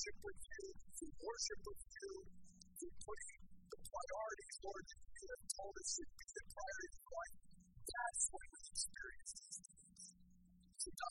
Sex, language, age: female, English, 40-59